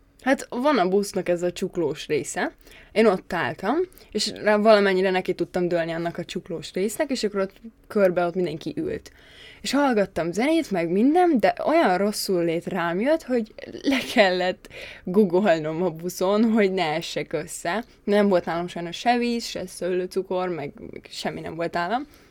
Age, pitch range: 20-39, 175-230 Hz